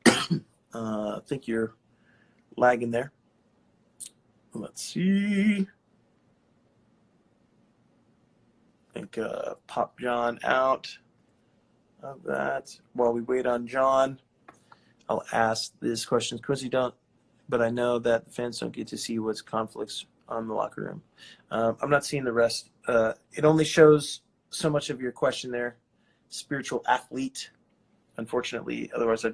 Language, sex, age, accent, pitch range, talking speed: English, male, 30-49, American, 115-145 Hz, 130 wpm